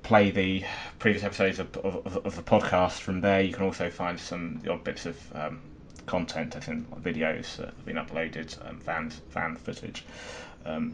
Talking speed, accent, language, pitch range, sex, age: 185 wpm, British, English, 80-100 Hz, male, 20-39